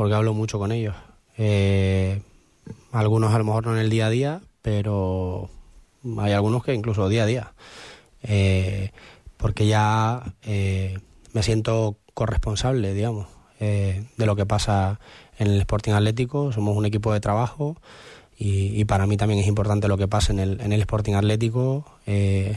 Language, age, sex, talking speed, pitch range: Spanish, 20-39, male, 170 wpm, 100-110 Hz